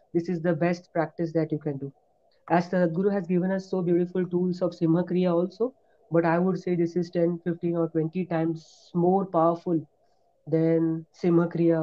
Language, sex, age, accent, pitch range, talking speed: English, female, 30-49, Indian, 165-205 Hz, 195 wpm